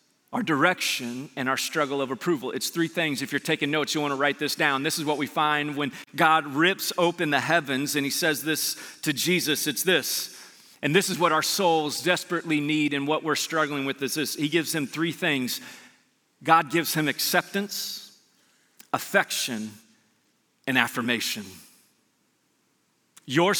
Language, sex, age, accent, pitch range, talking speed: English, male, 40-59, American, 145-190 Hz, 170 wpm